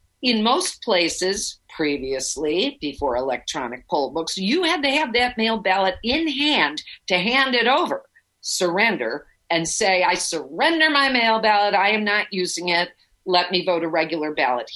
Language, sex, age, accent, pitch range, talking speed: English, female, 50-69, American, 190-250 Hz, 165 wpm